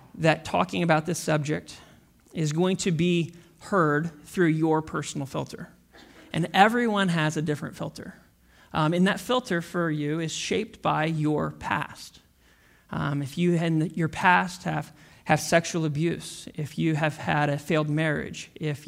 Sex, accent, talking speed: male, American, 160 wpm